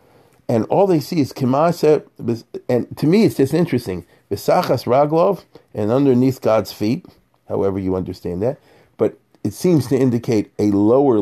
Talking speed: 155 wpm